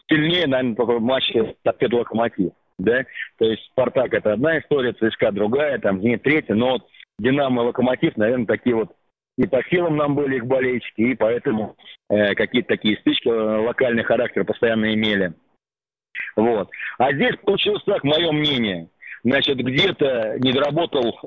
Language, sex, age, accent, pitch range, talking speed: Russian, male, 40-59, native, 115-145 Hz, 160 wpm